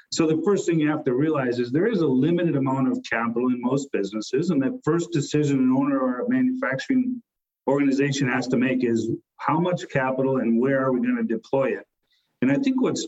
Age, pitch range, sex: 40-59, 130-165 Hz, male